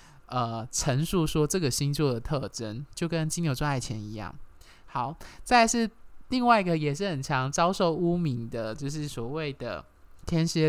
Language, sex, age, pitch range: Chinese, male, 20-39, 140-200 Hz